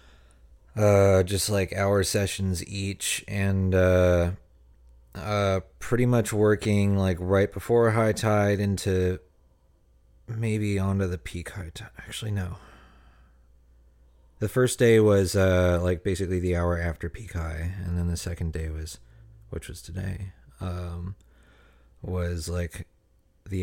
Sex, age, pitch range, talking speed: male, 30-49, 80-100 Hz, 130 wpm